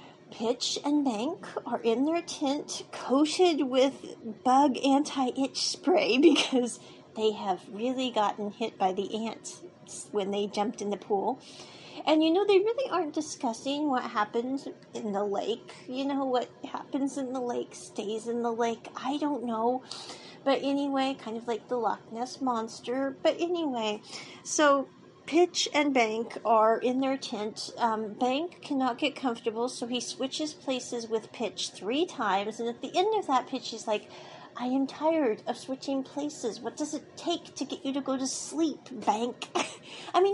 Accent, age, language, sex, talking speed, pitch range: American, 40-59, English, female, 170 wpm, 225-295 Hz